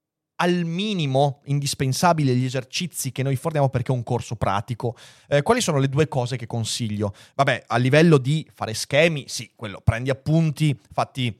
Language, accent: Italian, native